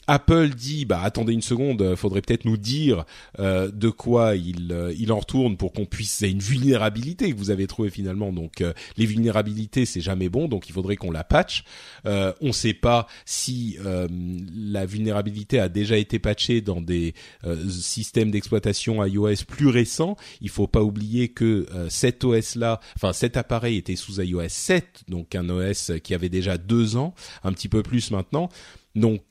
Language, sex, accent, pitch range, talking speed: French, male, French, 95-125 Hz, 190 wpm